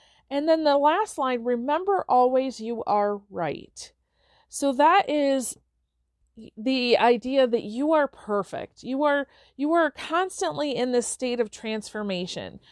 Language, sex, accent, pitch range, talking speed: English, female, American, 220-285 Hz, 135 wpm